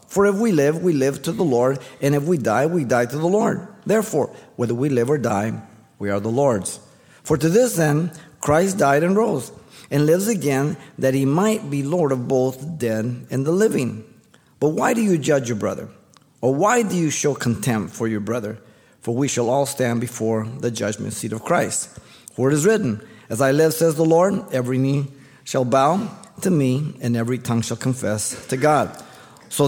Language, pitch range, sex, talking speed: English, 130-165 Hz, male, 205 wpm